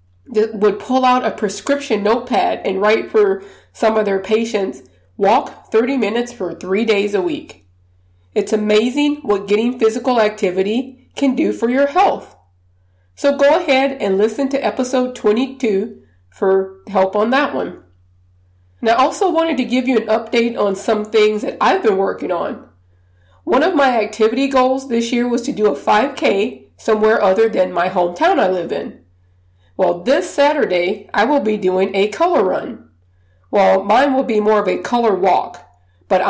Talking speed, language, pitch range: 170 wpm, English, 185-230 Hz